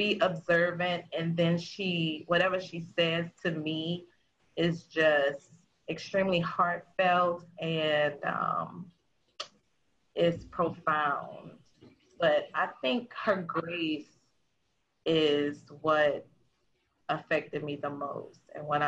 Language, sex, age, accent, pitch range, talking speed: English, female, 30-49, American, 150-175 Hz, 100 wpm